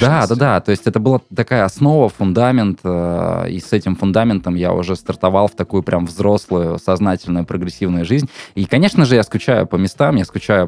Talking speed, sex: 185 wpm, male